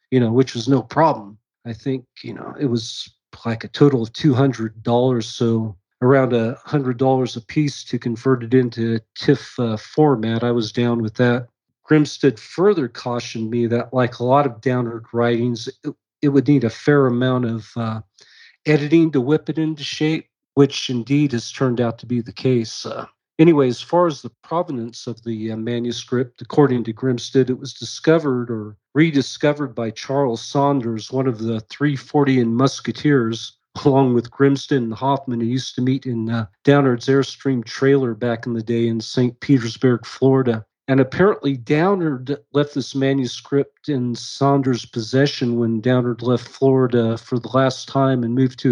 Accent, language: American, English